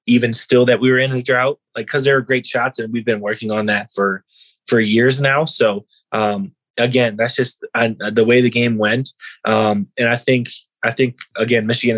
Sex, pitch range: male, 110-130 Hz